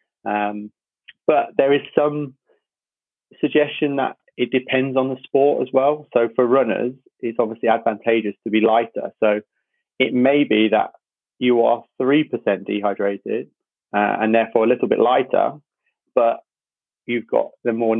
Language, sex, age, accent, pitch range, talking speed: English, male, 30-49, British, 115-130 Hz, 150 wpm